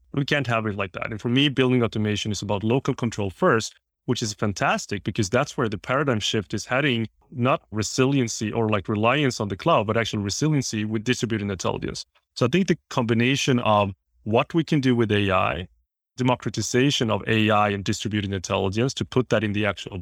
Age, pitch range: 30-49, 105-125 Hz